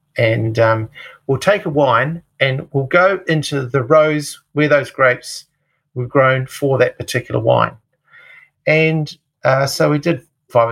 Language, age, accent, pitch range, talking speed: English, 50-69, Australian, 125-150 Hz, 150 wpm